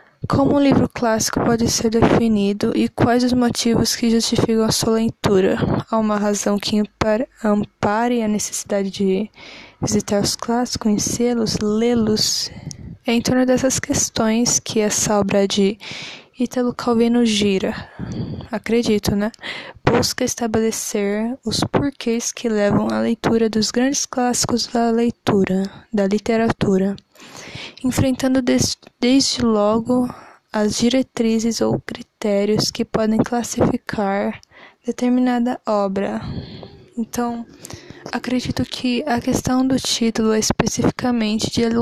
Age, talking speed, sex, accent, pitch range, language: 10-29, 115 wpm, female, Brazilian, 210-240 Hz, Portuguese